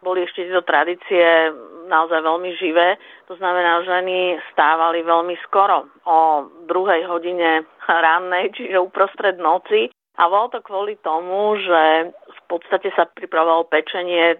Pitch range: 165-185 Hz